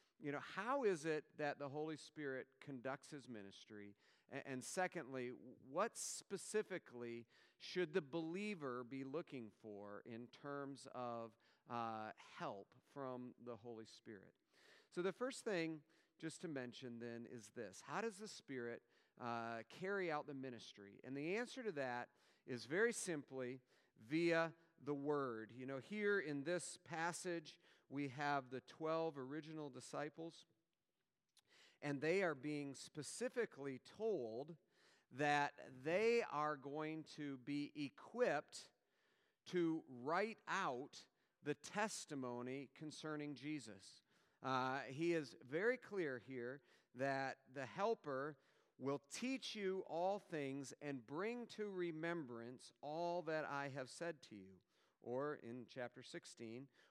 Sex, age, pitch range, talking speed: male, 40-59, 125-170 Hz, 130 wpm